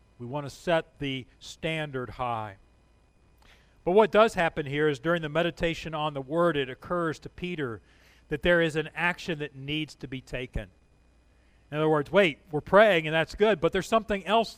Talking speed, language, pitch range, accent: 190 wpm, English, 140-180 Hz, American